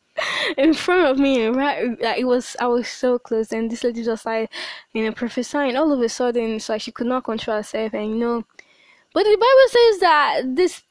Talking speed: 210 wpm